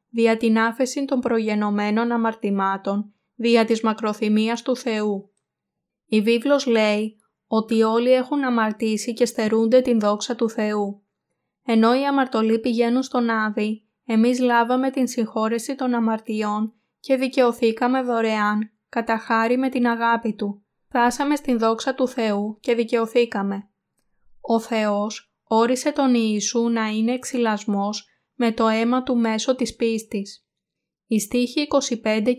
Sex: female